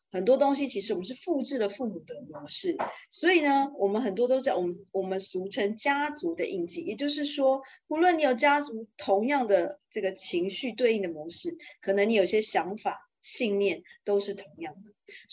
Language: Chinese